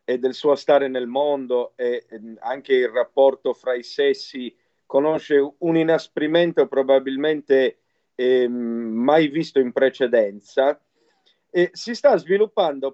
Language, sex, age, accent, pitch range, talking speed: Italian, male, 50-69, native, 130-175 Hz, 120 wpm